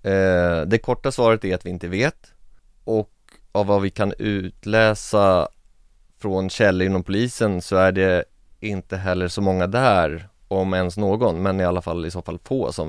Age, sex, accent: 30-49, male, Swedish